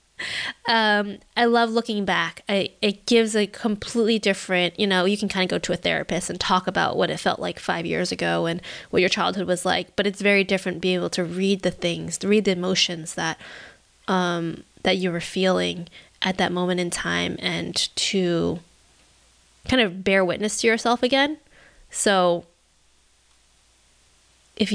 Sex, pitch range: female, 175-205 Hz